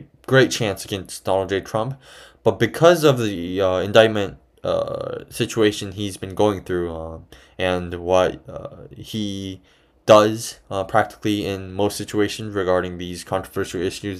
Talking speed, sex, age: 140 wpm, male, 20-39